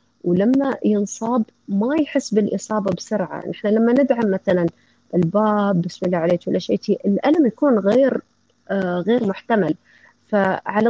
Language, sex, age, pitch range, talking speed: Arabic, female, 30-49, 195-255 Hz, 125 wpm